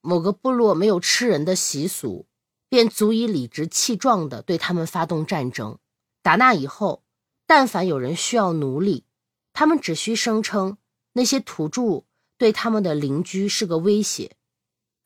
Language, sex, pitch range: Chinese, female, 155-225 Hz